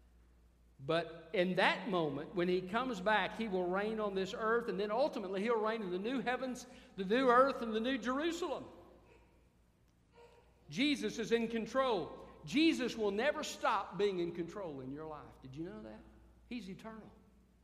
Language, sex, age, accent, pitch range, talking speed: English, male, 50-69, American, 135-225 Hz, 170 wpm